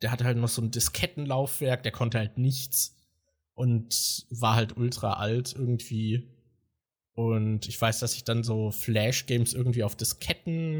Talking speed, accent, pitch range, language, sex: 155 wpm, German, 115-135 Hz, German, male